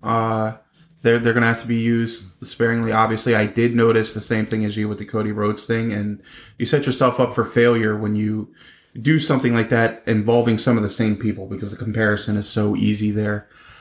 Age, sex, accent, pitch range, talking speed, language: 30-49, male, American, 110-130 Hz, 215 wpm, English